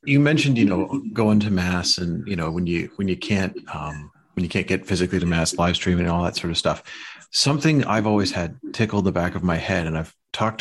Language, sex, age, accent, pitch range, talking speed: English, male, 30-49, American, 90-110 Hz, 250 wpm